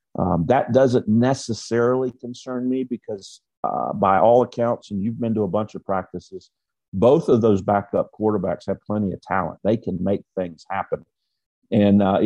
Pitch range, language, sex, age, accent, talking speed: 100-125 Hz, English, male, 50-69, American, 170 wpm